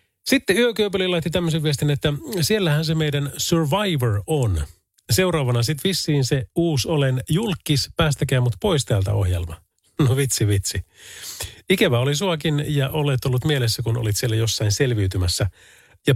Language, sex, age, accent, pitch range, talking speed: Finnish, male, 40-59, native, 105-155 Hz, 145 wpm